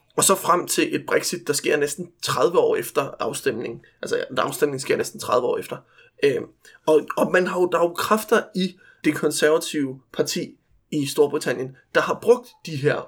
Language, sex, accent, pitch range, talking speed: Danish, male, native, 150-230 Hz, 180 wpm